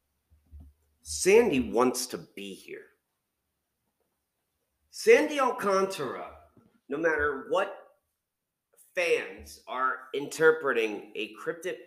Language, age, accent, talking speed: English, 40-59, American, 75 wpm